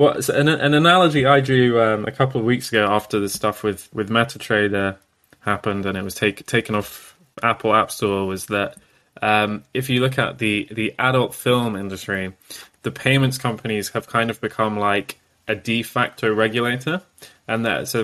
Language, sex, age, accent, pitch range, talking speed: English, male, 20-39, British, 100-125 Hz, 185 wpm